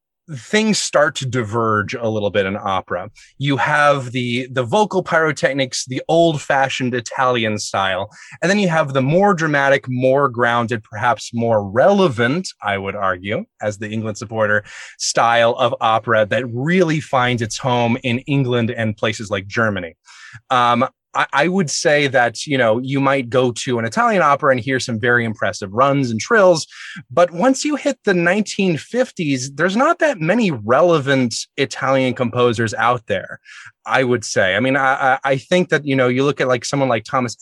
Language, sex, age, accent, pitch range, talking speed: English, male, 30-49, American, 115-145 Hz, 175 wpm